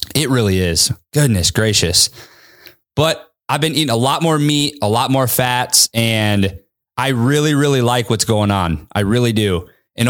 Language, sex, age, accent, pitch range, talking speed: English, male, 20-39, American, 105-130 Hz, 170 wpm